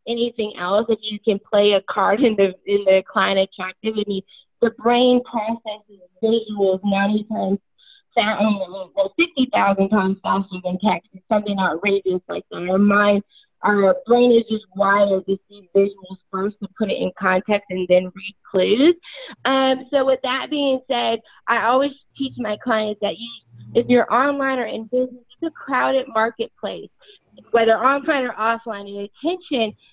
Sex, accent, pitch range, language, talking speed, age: female, American, 205-260 Hz, English, 160 wpm, 20-39